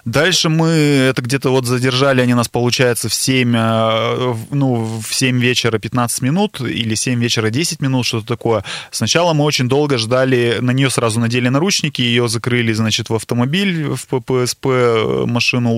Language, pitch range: Russian, 115-135 Hz